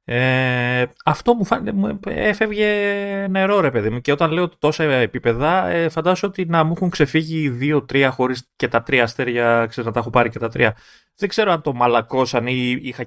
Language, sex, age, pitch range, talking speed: Greek, male, 30-49, 105-145 Hz, 190 wpm